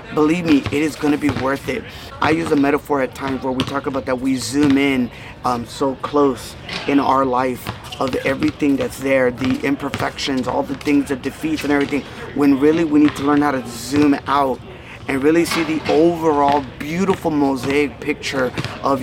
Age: 30-49